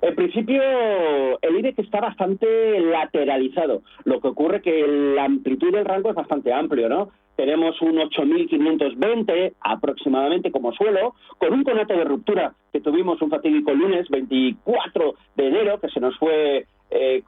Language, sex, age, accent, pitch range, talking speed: Spanish, male, 40-59, Spanish, 145-225 Hz, 155 wpm